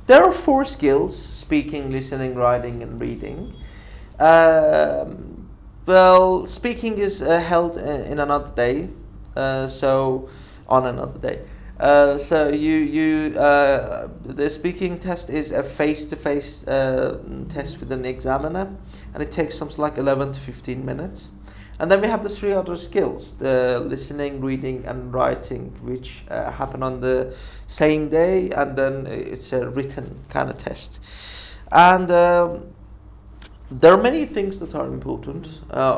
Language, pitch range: Persian, 125-155 Hz